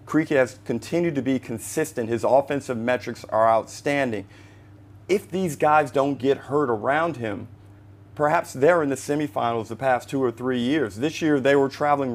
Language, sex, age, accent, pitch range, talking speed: English, male, 40-59, American, 110-140 Hz, 175 wpm